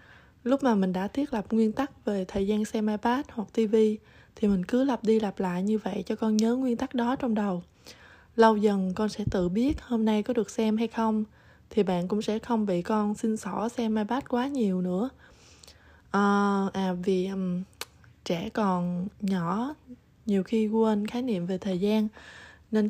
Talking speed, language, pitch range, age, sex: 195 wpm, Vietnamese, 200-235 Hz, 20-39, female